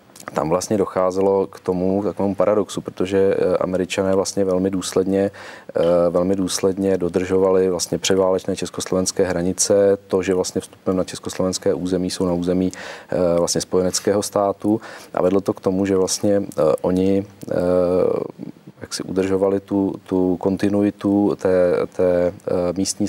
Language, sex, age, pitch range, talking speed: Czech, male, 40-59, 90-95 Hz, 125 wpm